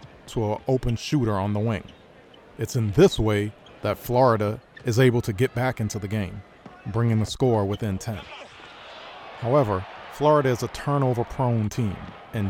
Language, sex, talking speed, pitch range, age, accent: English, male, 165 wpm, 105-130 Hz, 40-59, American